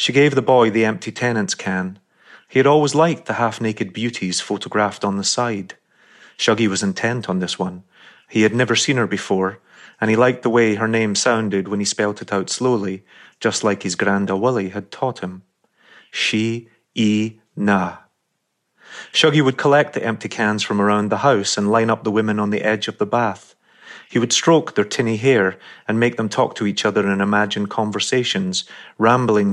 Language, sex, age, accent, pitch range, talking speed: English, male, 30-49, British, 100-120 Hz, 190 wpm